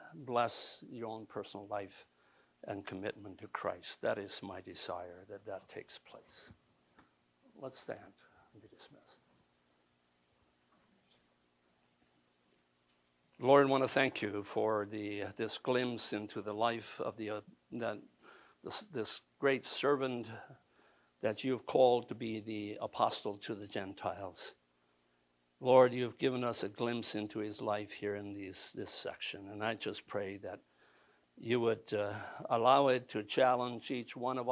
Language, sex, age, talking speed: English, male, 60-79, 145 wpm